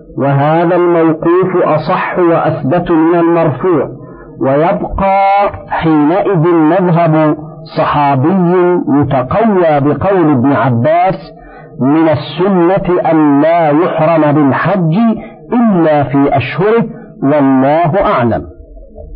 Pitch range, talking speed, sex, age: 150-165 Hz, 80 wpm, male, 50-69